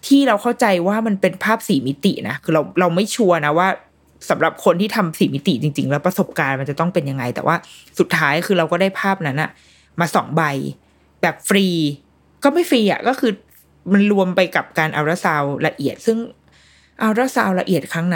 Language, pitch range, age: Thai, 160-225 Hz, 20-39